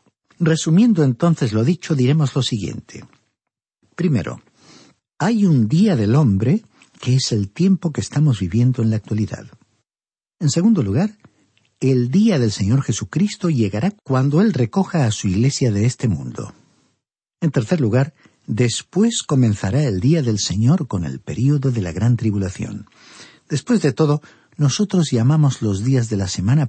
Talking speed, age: 150 wpm, 50-69